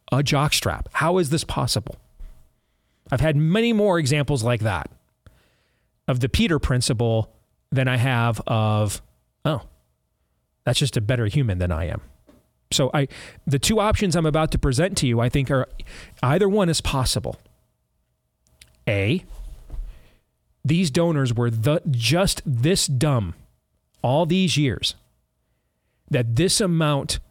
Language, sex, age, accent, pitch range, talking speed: English, male, 40-59, American, 115-165 Hz, 135 wpm